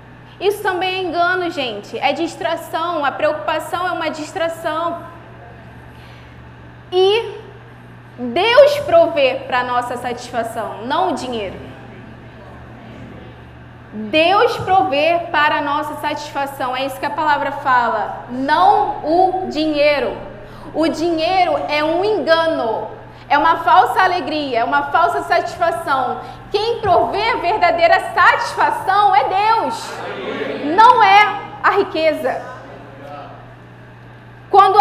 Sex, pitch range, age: female, 290-370 Hz, 20-39